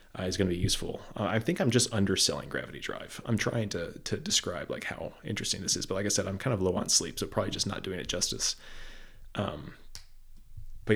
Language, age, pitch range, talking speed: English, 30-49, 95-115 Hz, 230 wpm